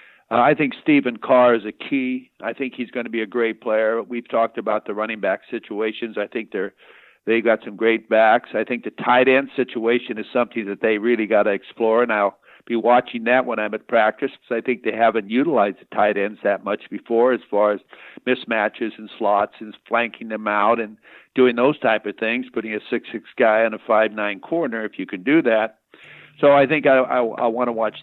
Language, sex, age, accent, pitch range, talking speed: English, male, 50-69, American, 110-125 Hz, 225 wpm